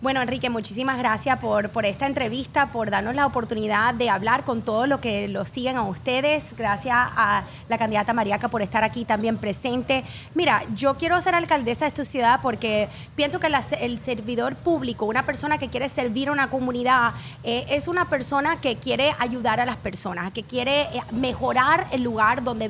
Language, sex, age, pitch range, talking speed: English, female, 20-39, 235-295 Hz, 190 wpm